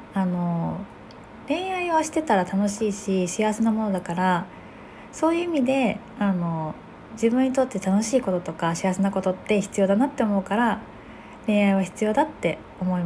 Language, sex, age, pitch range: Japanese, female, 20-39, 190-260 Hz